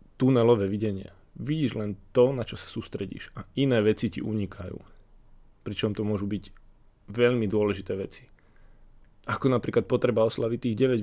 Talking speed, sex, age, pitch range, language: 145 wpm, male, 20-39, 100-120 Hz, Slovak